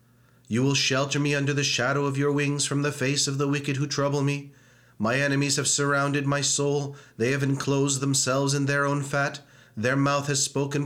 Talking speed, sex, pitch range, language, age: 205 wpm, male, 140-145 Hz, English, 30-49